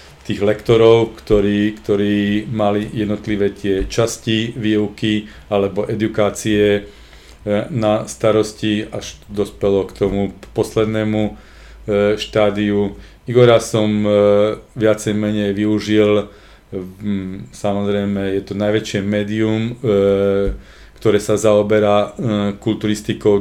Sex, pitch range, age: male, 100-110 Hz, 40-59